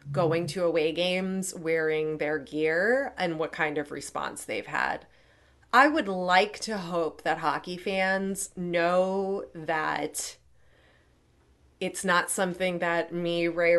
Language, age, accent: English, 30-49, American